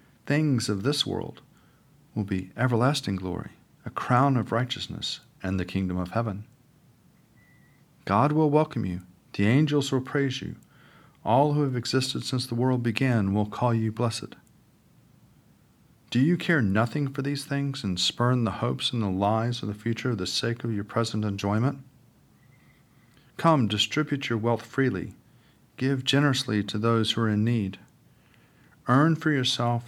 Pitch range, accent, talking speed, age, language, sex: 105-130 Hz, American, 155 wpm, 50-69, English, male